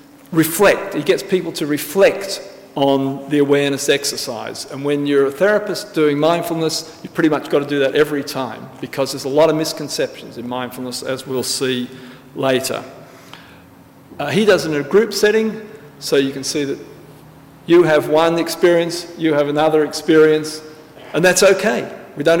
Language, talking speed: English, 175 wpm